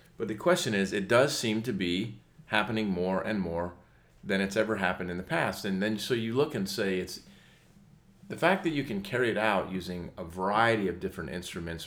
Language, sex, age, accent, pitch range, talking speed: English, male, 40-59, American, 90-115 Hz, 210 wpm